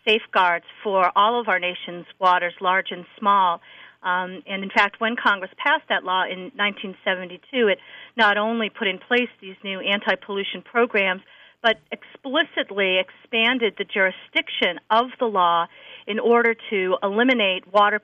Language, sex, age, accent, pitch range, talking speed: English, female, 40-59, American, 180-220 Hz, 145 wpm